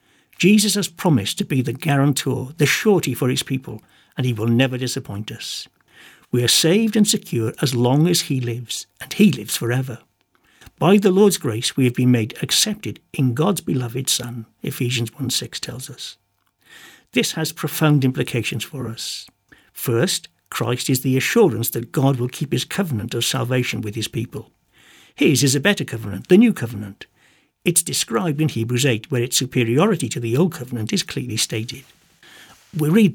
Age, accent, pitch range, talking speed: 60-79, British, 120-155 Hz, 175 wpm